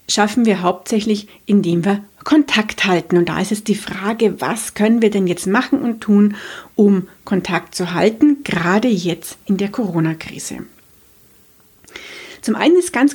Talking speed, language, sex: 155 wpm, German, female